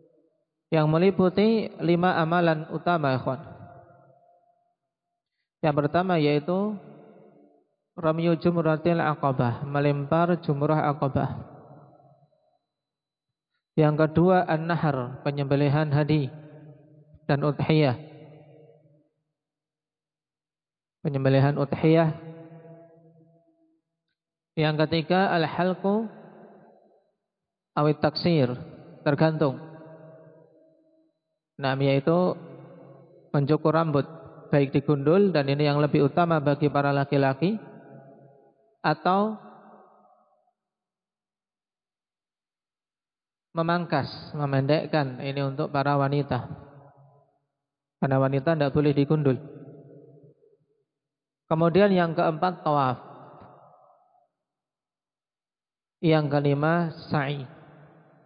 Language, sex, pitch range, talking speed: Indonesian, male, 145-170 Hz, 65 wpm